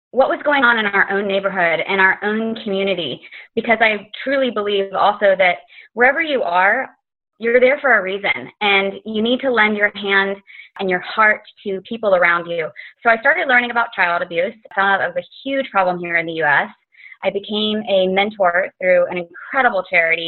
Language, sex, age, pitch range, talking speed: English, female, 20-39, 180-230 Hz, 190 wpm